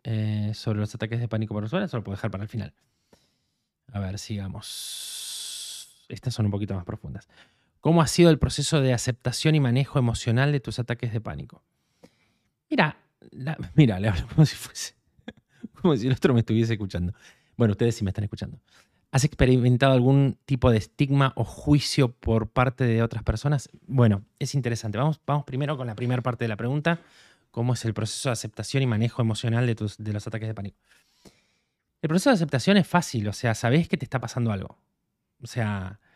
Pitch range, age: 110-135 Hz, 20-39